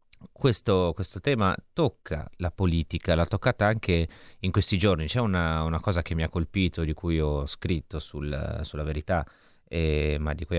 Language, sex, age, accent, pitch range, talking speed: Italian, male, 30-49, native, 80-95 Hz, 170 wpm